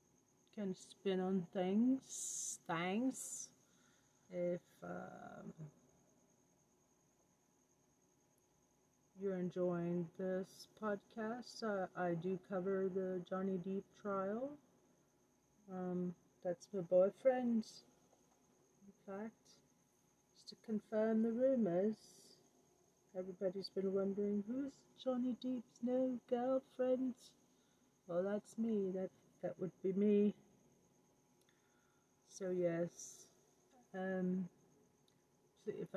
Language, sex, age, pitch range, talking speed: English, female, 40-59, 180-215 Hz, 85 wpm